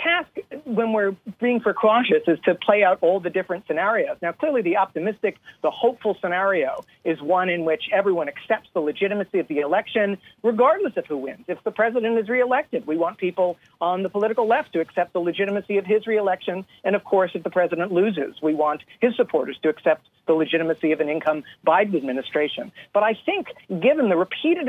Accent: American